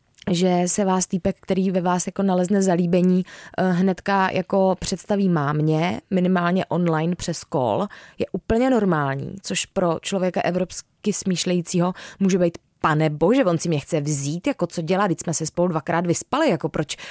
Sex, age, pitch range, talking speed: female, 20-39, 170-200 Hz, 165 wpm